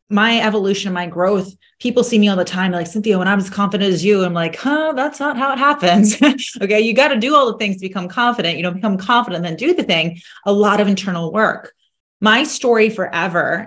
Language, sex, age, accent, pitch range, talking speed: English, female, 30-49, American, 180-230 Hz, 235 wpm